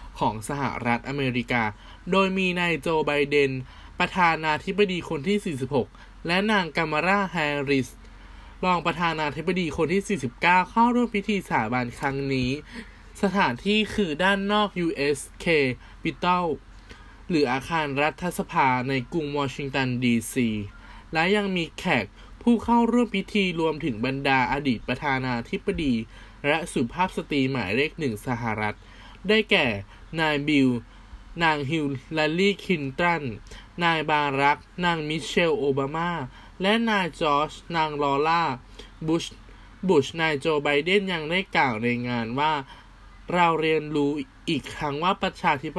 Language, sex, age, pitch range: Thai, male, 20-39, 130-175 Hz